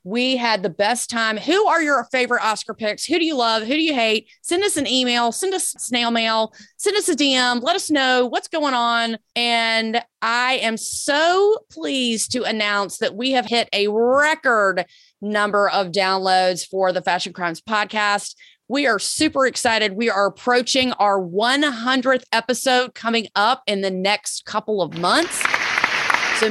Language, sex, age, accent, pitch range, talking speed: English, female, 30-49, American, 205-275 Hz, 175 wpm